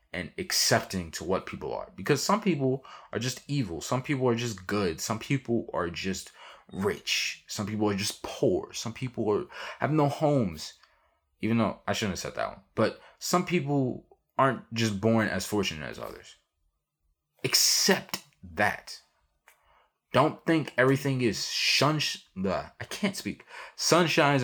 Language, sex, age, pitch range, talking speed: English, male, 20-39, 75-125 Hz, 150 wpm